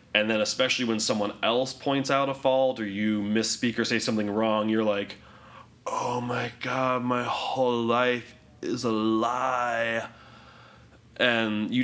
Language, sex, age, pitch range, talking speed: English, male, 20-39, 100-120 Hz, 150 wpm